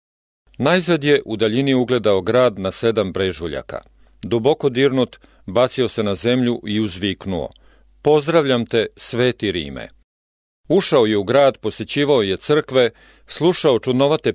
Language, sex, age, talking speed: English, male, 40-59, 125 wpm